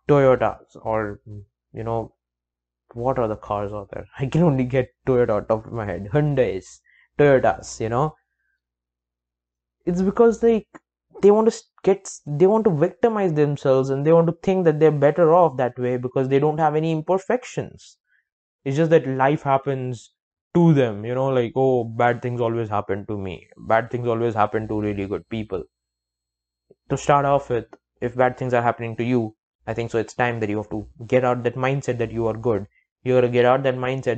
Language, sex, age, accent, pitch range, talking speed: English, male, 20-39, Indian, 110-150 Hz, 195 wpm